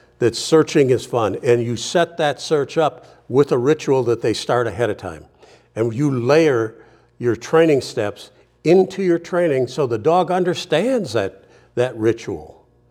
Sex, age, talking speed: male, 60-79, 165 wpm